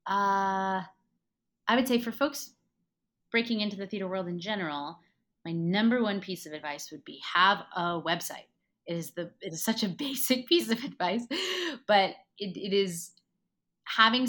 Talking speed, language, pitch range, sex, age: 165 wpm, English, 170-220 Hz, female, 30-49